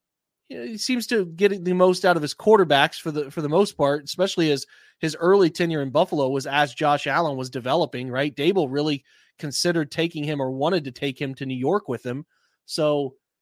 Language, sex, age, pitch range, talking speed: English, male, 30-49, 140-175 Hz, 205 wpm